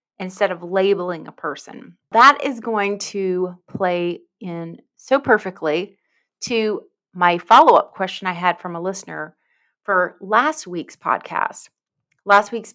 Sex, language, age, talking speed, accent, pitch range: female, English, 30-49, 135 wpm, American, 175-225 Hz